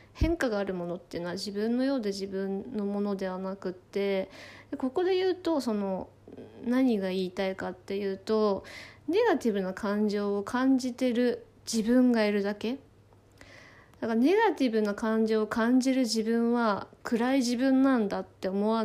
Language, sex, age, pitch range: Japanese, female, 20-39, 200-265 Hz